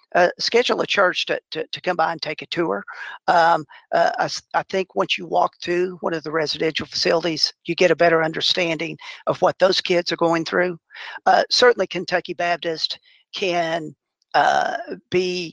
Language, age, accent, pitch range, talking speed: English, 50-69, American, 165-185 Hz, 180 wpm